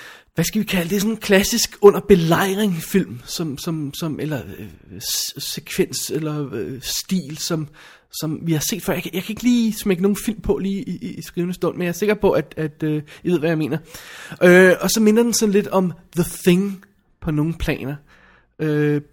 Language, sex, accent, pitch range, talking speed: Danish, male, native, 150-190 Hz, 215 wpm